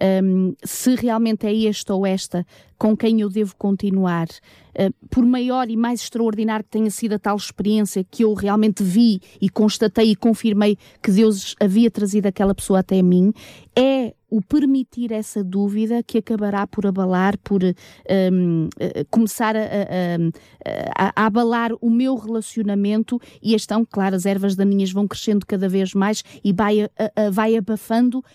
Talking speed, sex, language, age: 150 wpm, female, Portuguese, 20-39